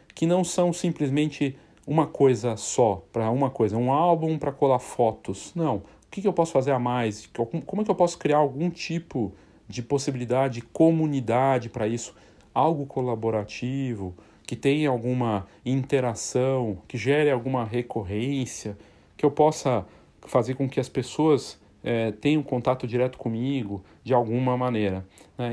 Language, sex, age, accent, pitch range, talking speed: Portuguese, male, 40-59, Brazilian, 120-160 Hz, 150 wpm